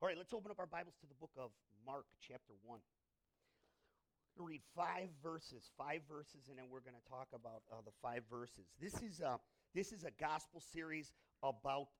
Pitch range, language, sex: 130-180 Hz, English, male